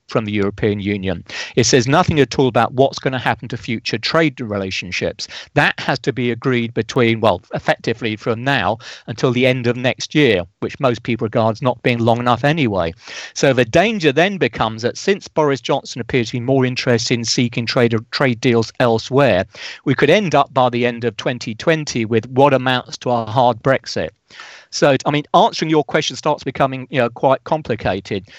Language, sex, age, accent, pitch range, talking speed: English, male, 40-59, British, 115-140 Hz, 190 wpm